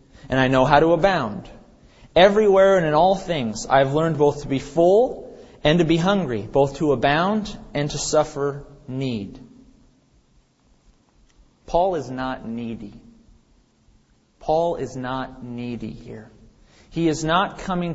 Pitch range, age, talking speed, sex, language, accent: 125-155 Hz, 30-49, 135 wpm, male, English, American